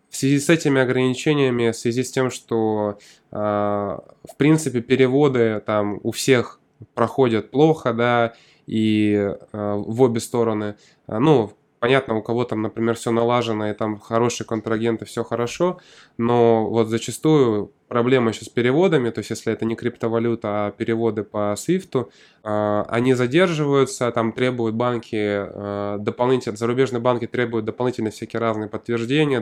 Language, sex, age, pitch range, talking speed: Russian, male, 20-39, 110-130 Hz, 145 wpm